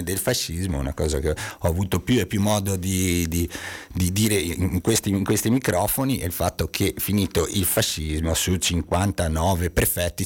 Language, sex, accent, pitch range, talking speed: Italian, male, native, 90-115 Hz, 175 wpm